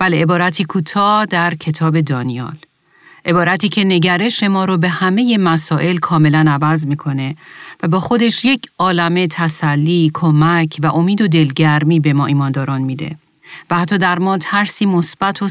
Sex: female